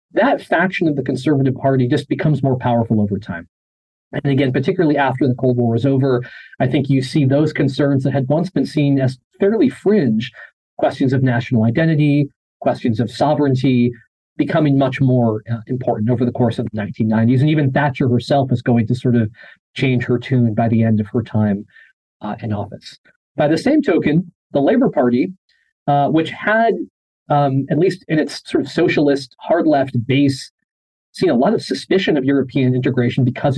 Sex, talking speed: male, 185 wpm